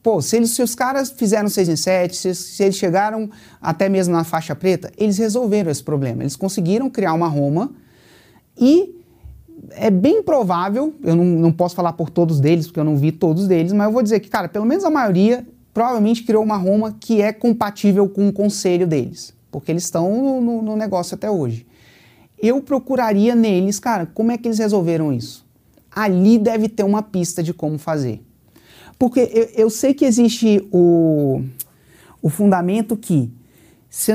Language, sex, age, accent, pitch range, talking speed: Portuguese, male, 30-49, Brazilian, 155-215 Hz, 185 wpm